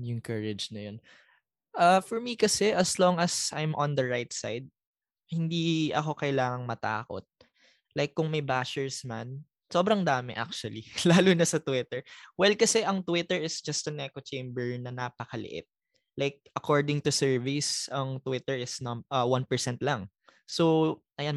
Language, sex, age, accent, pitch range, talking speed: Filipino, male, 20-39, native, 125-155 Hz, 155 wpm